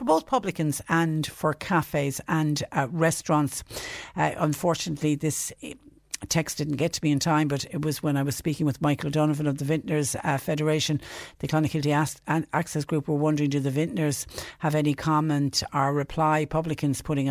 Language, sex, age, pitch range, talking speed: English, female, 60-79, 140-155 Hz, 175 wpm